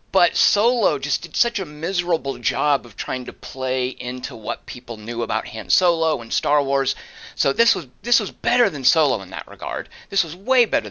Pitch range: 110-165 Hz